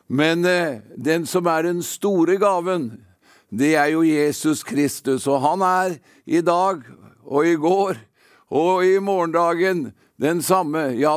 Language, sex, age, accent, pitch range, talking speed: English, male, 50-69, Swedish, 155-195 Hz, 160 wpm